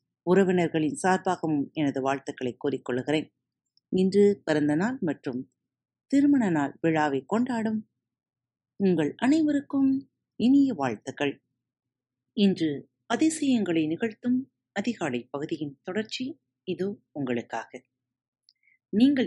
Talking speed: 80 wpm